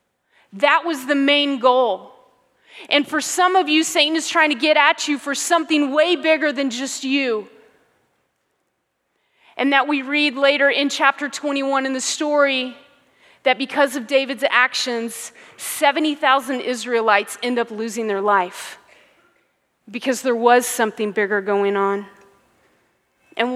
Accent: American